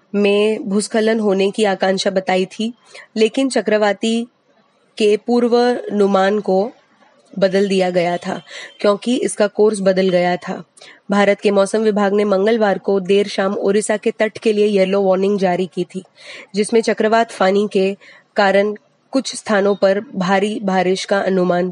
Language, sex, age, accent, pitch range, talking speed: Hindi, female, 20-39, native, 195-255 Hz, 150 wpm